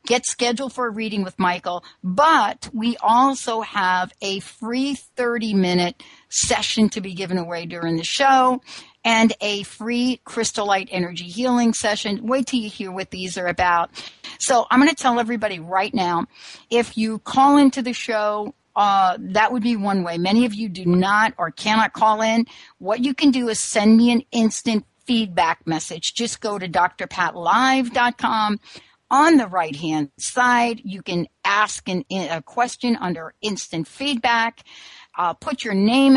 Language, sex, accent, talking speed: English, female, American, 165 wpm